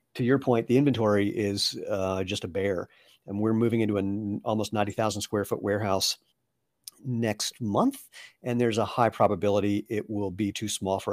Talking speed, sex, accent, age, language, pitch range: 180 wpm, male, American, 50-69, English, 100-120 Hz